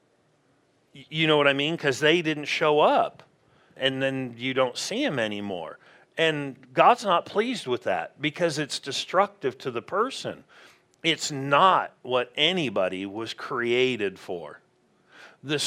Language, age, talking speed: English, 40-59, 140 wpm